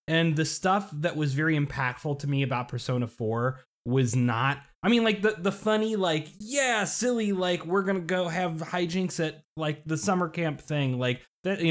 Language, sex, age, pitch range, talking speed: English, male, 20-39, 120-165 Hz, 200 wpm